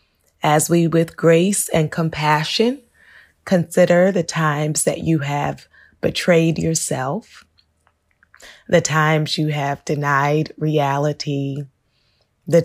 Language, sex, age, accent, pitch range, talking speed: English, female, 20-39, American, 130-160 Hz, 100 wpm